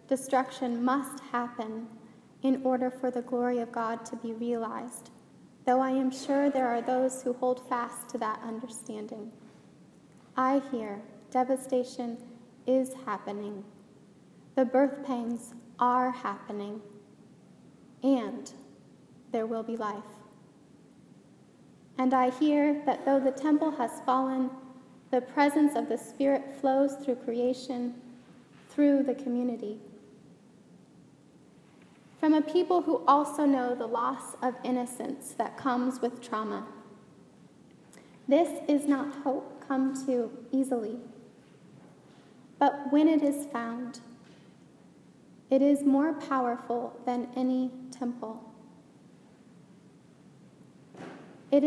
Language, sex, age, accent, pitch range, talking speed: English, female, 10-29, American, 235-275 Hz, 110 wpm